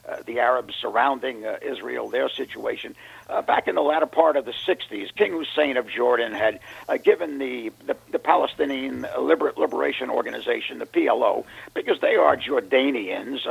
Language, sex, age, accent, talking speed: English, male, 50-69, American, 165 wpm